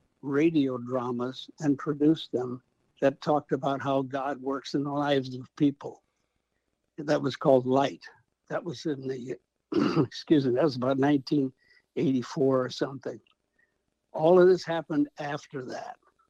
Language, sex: English, male